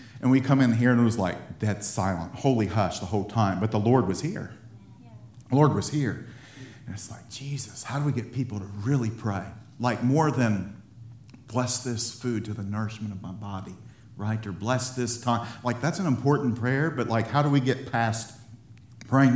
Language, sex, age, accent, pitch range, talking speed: English, male, 50-69, American, 110-130 Hz, 210 wpm